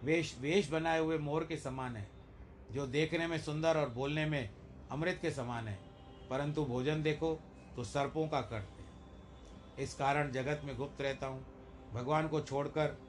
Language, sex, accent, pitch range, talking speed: Hindi, male, native, 115-145 Hz, 170 wpm